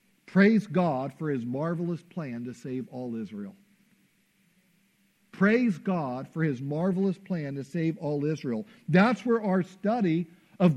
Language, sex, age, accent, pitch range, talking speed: English, male, 50-69, American, 170-210 Hz, 140 wpm